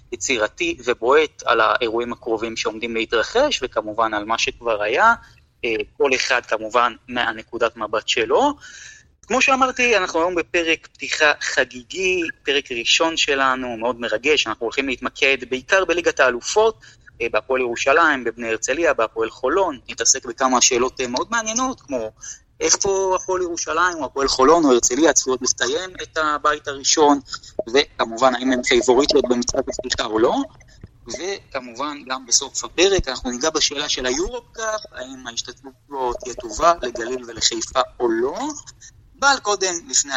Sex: male